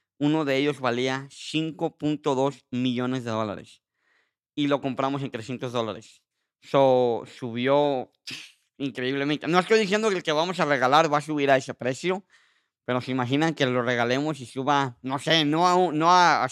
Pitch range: 125-150 Hz